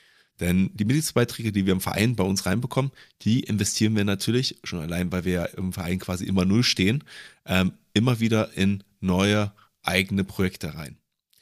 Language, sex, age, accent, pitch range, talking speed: German, male, 30-49, German, 95-110 Hz, 175 wpm